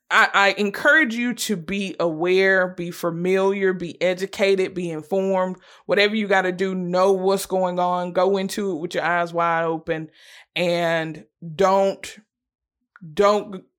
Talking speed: 145 wpm